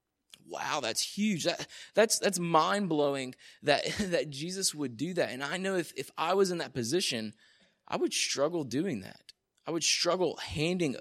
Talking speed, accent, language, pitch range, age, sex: 175 wpm, American, English, 125-165 Hz, 20-39, male